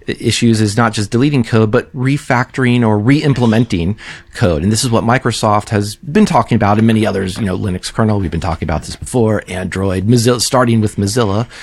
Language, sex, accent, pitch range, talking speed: English, male, American, 105-130 Hz, 195 wpm